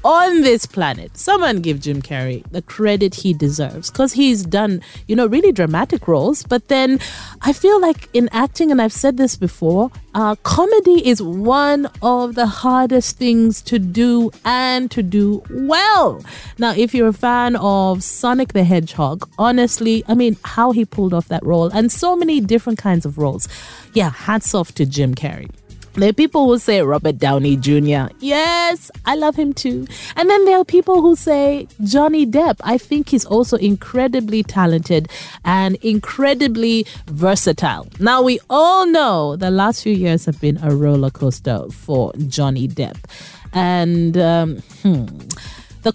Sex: female